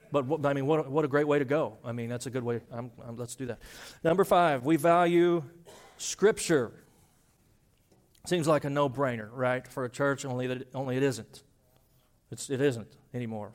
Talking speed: 185 wpm